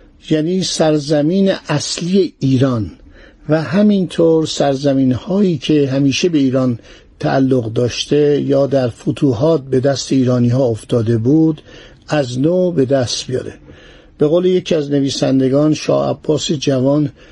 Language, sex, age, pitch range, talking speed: Persian, male, 60-79, 130-160 Hz, 120 wpm